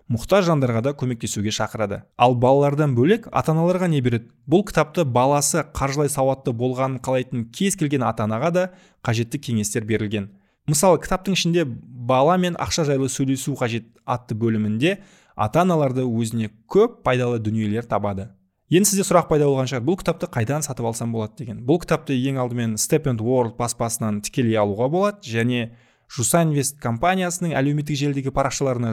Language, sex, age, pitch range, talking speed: Russian, male, 20-39, 120-160 Hz, 105 wpm